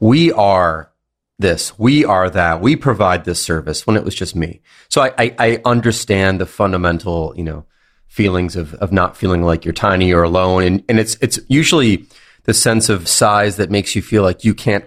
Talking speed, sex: 200 wpm, male